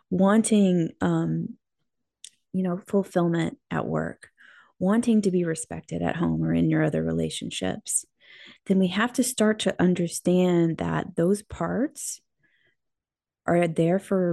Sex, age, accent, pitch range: female, 30-49, American, 165-200 Hz